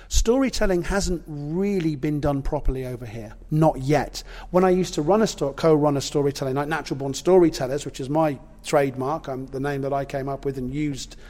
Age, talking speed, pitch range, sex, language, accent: 40-59, 200 wpm, 150-195 Hz, male, English, British